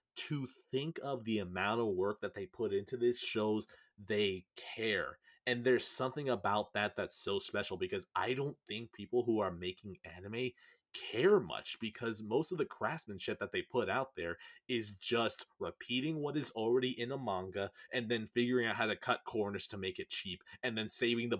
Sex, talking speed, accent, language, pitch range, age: male, 195 wpm, American, English, 105-140 Hz, 30-49